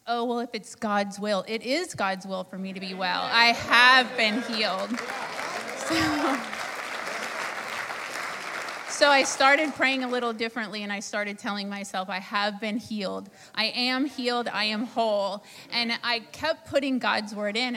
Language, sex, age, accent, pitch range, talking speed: English, female, 30-49, American, 200-240 Hz, 165 wpm